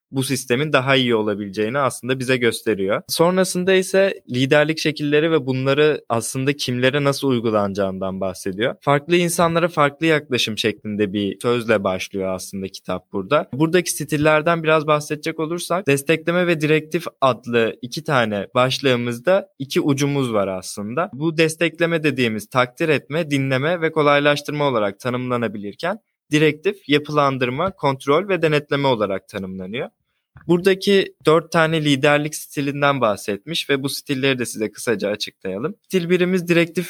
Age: 20-39